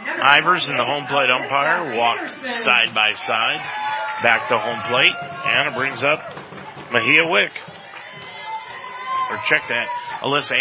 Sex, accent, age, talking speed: male, American, 40-59, 130 wpm